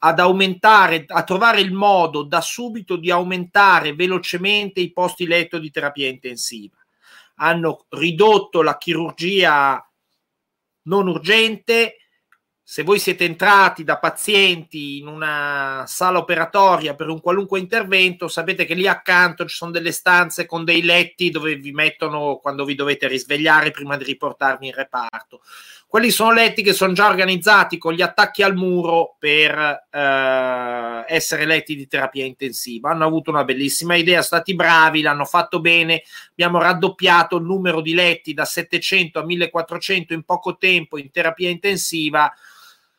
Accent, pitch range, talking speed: native, 155-190 Hz, 145 wpm